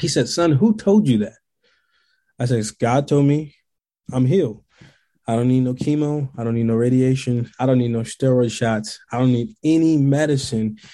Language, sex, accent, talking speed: English, male, American, 190 wpm